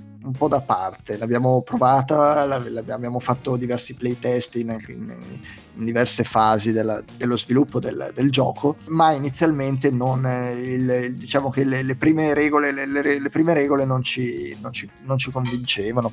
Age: 20-39